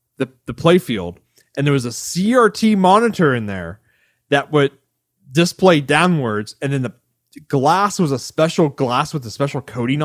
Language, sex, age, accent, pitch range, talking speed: English, male, 30-49, American, 120-155 Hz, 165 wpm